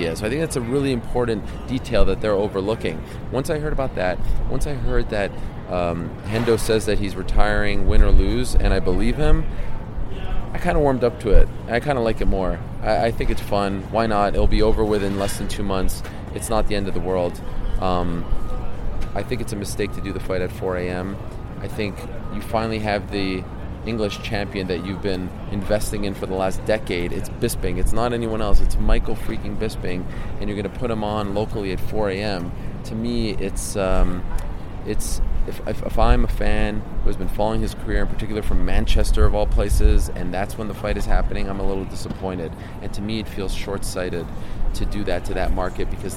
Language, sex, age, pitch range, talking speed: English, male, 30-49, 95-110 Hz, 215 wpm